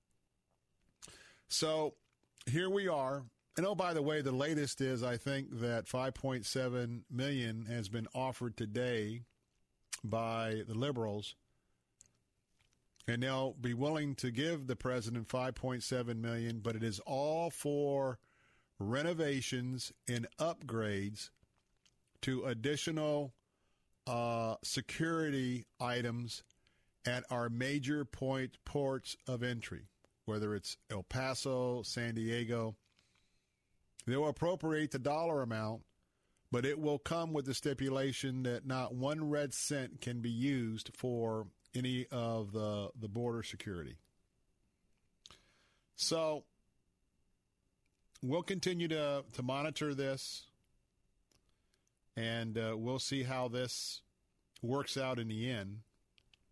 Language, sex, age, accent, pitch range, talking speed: English, male, 50-69, American, 115-140 Hz, 115 wpm